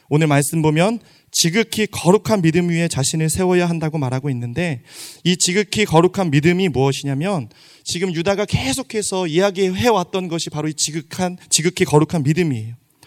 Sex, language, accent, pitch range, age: male, Korean, native, 155-195 Hz, 30-49